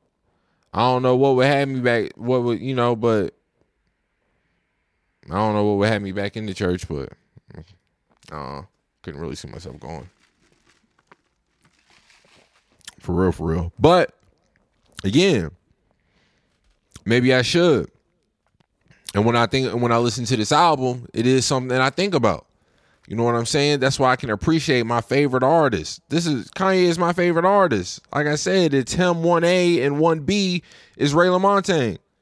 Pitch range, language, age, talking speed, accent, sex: 100-150 Hz, English, 20-39, 170 wpm, American, male